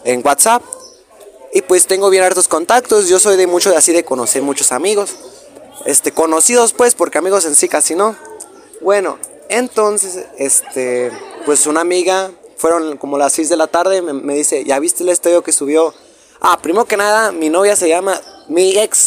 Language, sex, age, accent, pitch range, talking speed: Spanish, male, 20-39, Mexican, 150-215 Hz, 185 wpm